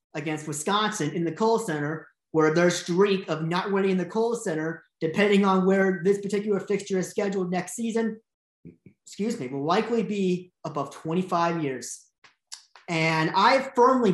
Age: 30-49